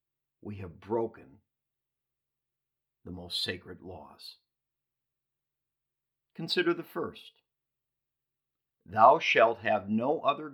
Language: English